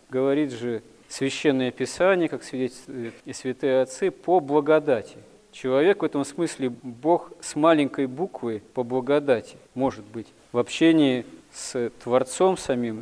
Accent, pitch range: native, 120-145 Hz